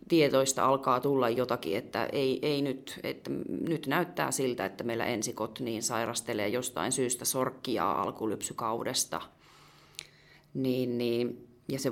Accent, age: native, 30-49